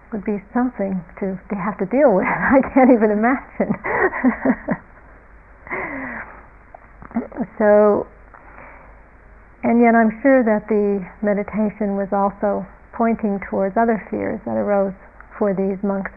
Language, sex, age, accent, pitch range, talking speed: English, female, 50-69, American, 200-240 Hz, 110 wpm